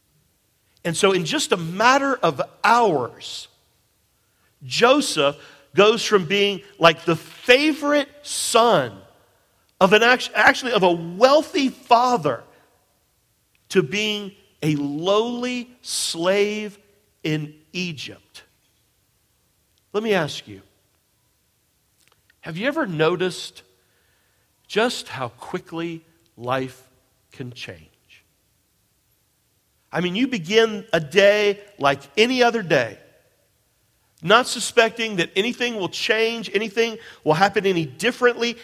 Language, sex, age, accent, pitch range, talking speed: English, male, 50-69, American, 130-215 Hz, 100 wpm